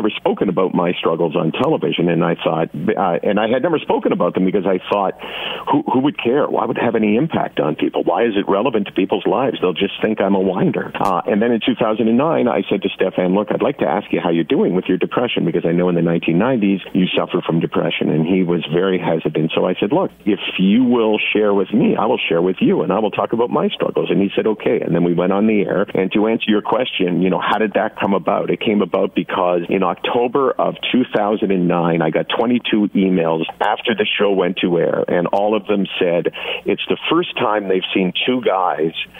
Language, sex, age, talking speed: English, male, 50-69, 245 wpm